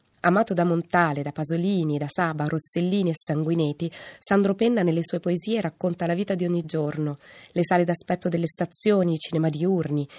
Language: Italian